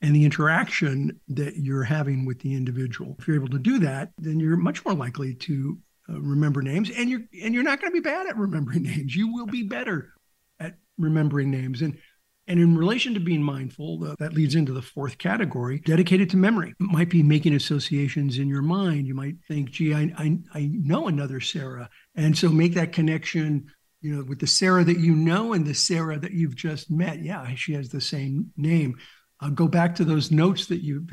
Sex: male